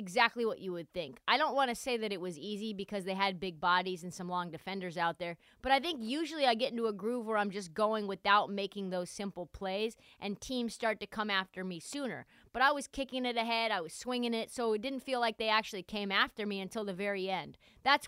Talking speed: 250 wpm